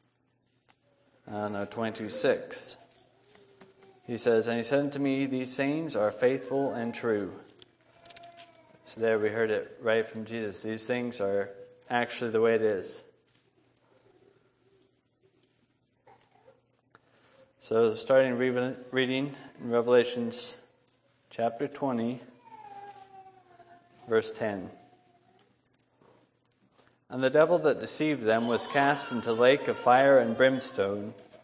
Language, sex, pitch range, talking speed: English, male, 115-145 Hz, 105 wpm